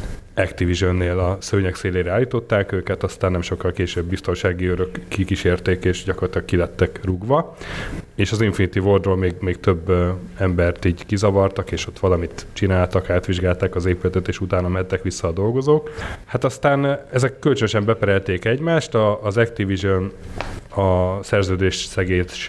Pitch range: 90-105 Hz